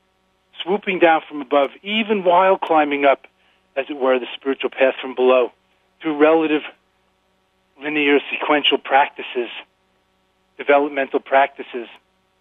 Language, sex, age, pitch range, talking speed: English, male, 40-59, 125-150 Hz, 110 wpm